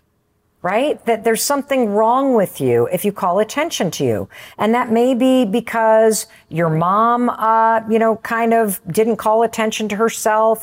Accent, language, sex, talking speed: American, English, female, 170 wpm